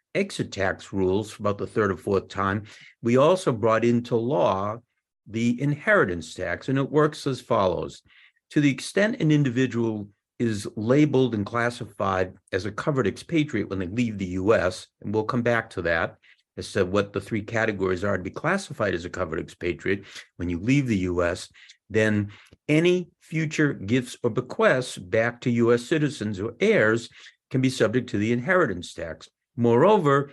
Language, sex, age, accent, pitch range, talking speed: English, male, 50-69, American, 105-135 Hz, 170 wpm